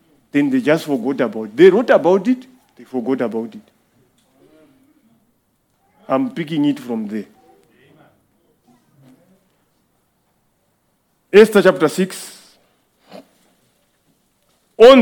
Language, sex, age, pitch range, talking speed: English, male, 50-69, 165-230 Hz, 90 wpm